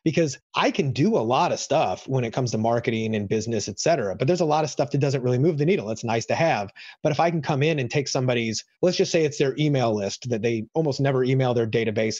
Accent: American